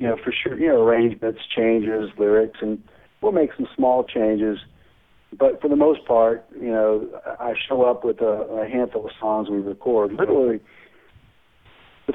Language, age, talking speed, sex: English, 50-69, 175 wpm, male